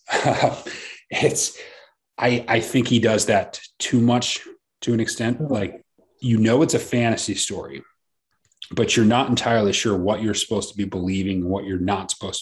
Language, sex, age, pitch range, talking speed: English, male, 30-49, 95-115 Hz, 165 wpm